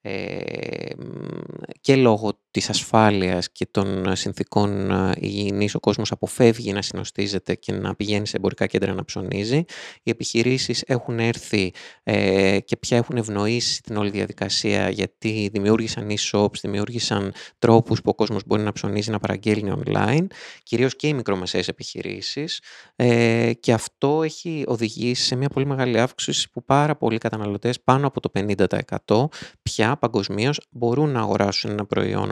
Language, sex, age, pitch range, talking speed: Greek, male, 20-39, 100-130 Hz, 140 wpm